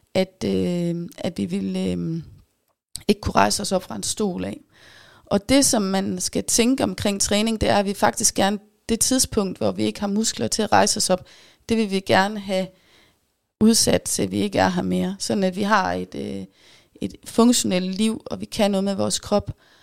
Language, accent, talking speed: Danish, native, 210 wpm